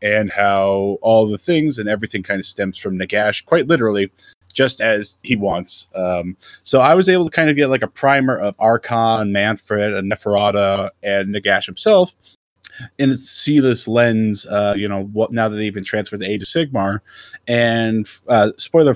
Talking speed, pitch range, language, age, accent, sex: 180 wpm, 100-120 Hz, English, 20-39, American, male